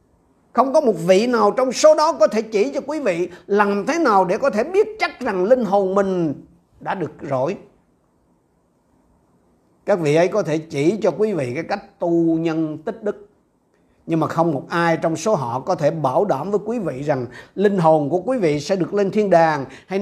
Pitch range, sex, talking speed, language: 145-220 Hz, male, 215 wpm, Vietnamese